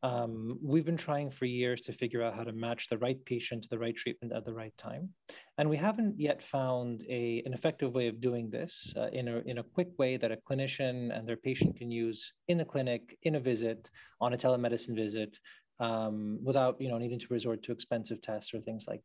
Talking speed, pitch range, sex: 230 wpm, 115-150 Hz, male